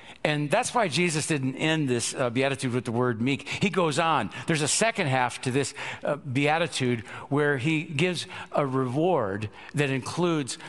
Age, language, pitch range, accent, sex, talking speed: 50-69, English, 130-170 Hz, American, male, 175 wpm